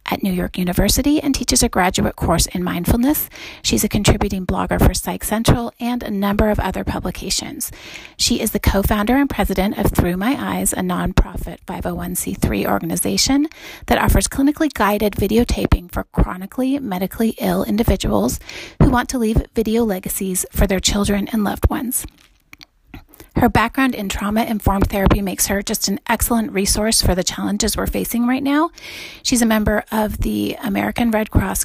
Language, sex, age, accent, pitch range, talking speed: English, female, 30-49, American, 195-245 Hz, 165 wpm